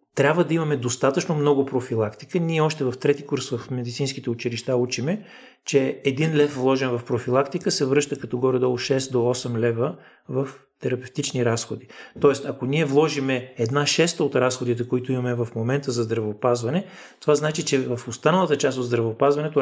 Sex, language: male, Bulgarian